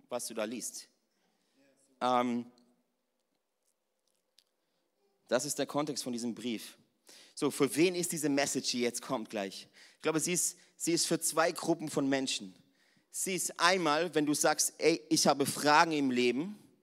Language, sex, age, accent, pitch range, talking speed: German, male, 30-49, German, 125-165 Hz, 155 wpm